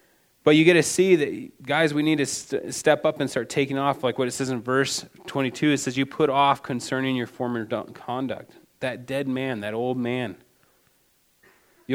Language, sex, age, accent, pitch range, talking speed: English, male, 20-39, American, 125-140 Hz, 195 wpm